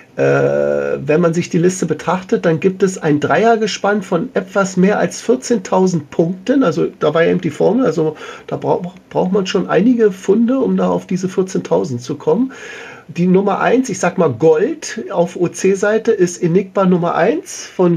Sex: male